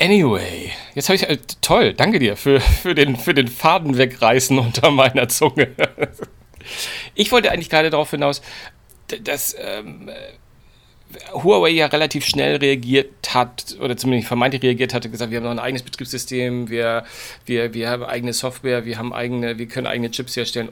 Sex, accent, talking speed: male, German, 170 wpm